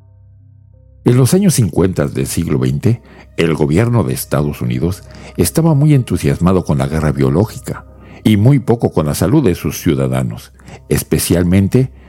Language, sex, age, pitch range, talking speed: Spanish, male, 50-69, 80-115 Hz, 145 wpm